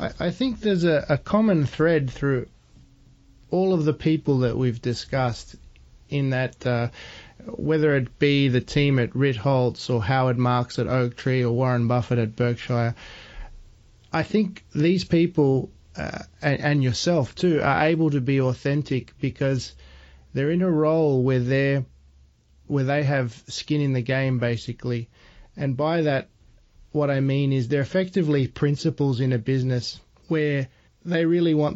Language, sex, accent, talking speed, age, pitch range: English, male, Australian, 155 wpm, 30-49, 125-150 Hz